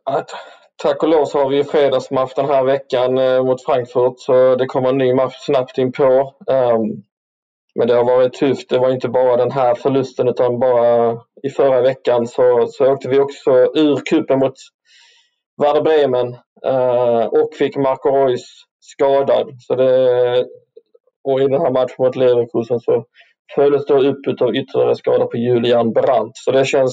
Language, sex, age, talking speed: English, male, 20-39, 175 wpm